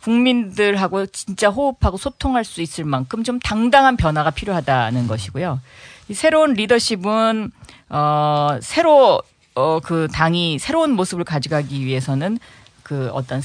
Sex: female